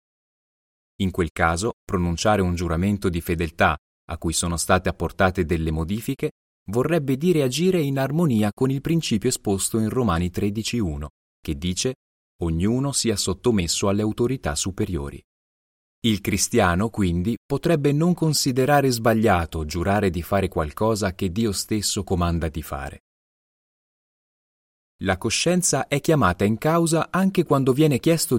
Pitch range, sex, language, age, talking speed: 90-130 Hz, male, Italian, 30-49, 130 wpm